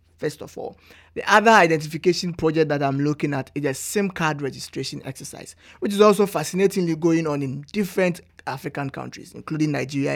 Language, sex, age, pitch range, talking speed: English, male, 50-69, 130-170 Hz, 170 wpm